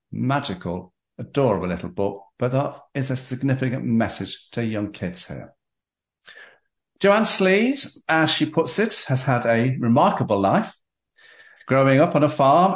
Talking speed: 140 wpm